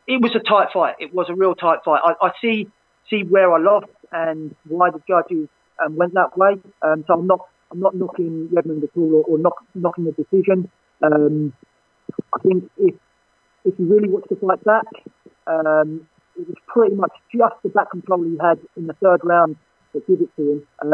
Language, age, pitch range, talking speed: English, 40-59, 155-195 Hz, 210 wpm